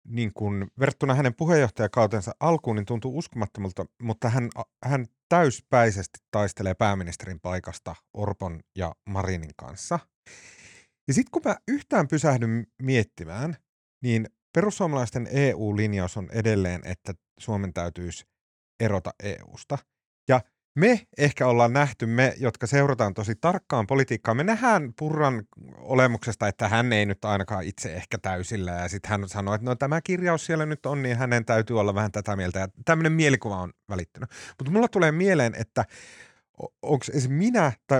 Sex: male